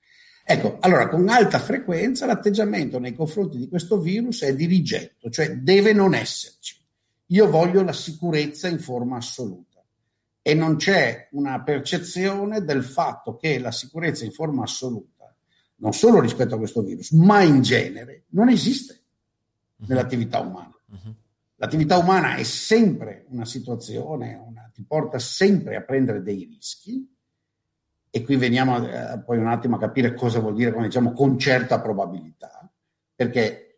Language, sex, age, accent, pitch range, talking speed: Italian, male, 50-69, native, 120-190 Hz, 145 wpm